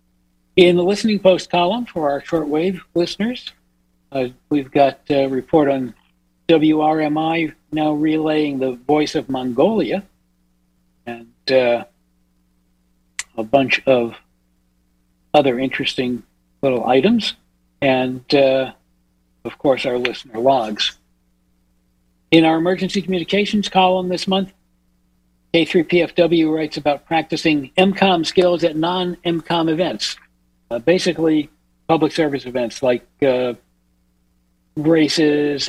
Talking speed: 105 wpm